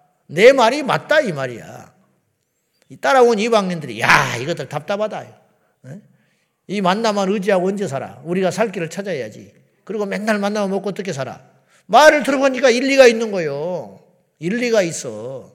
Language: Korean